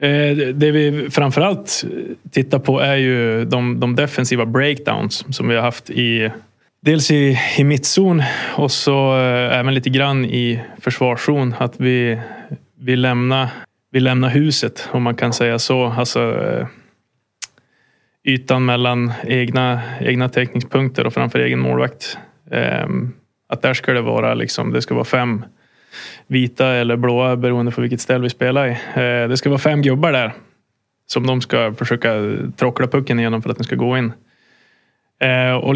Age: 20-39